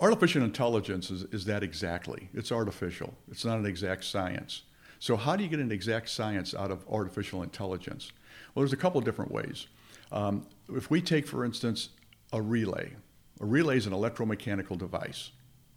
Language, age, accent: English, 50-69, American